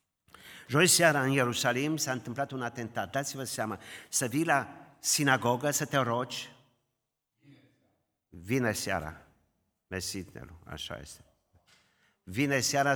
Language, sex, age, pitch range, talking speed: Romanian, male, 50-69, 100-130 Hz, 110 wpm